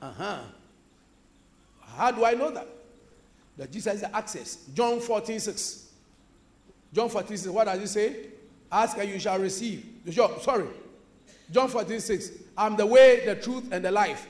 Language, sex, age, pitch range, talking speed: English, male, 50-69, 195-275 Hz, 155 wpm